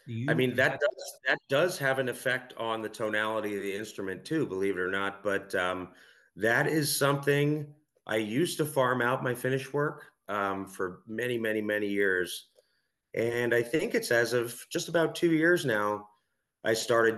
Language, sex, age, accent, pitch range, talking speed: English, male, 30-49, American, 100-135 Hz, 180 wpm